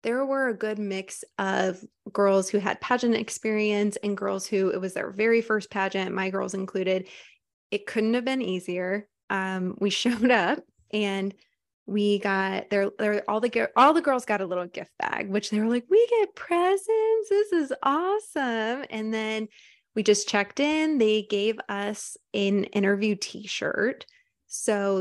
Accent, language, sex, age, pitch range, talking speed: American, English, female, 20-39, 195-230 Hz, 165 wpm